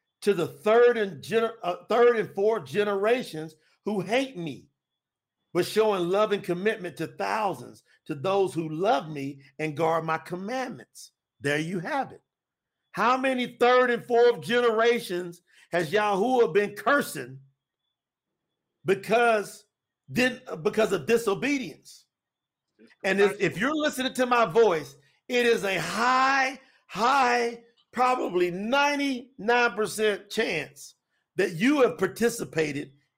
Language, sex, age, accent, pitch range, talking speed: English, male, 50-69, American, 175-250 Hz, 125 wpm